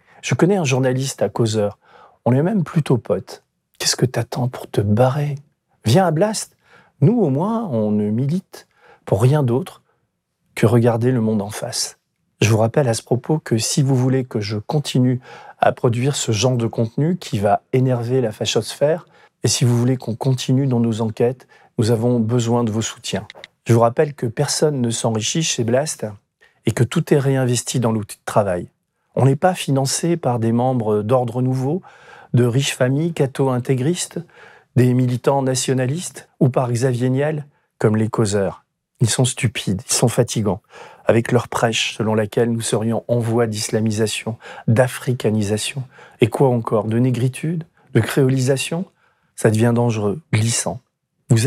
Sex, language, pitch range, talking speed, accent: male, French, 115-140 Hz, 170 wpm, French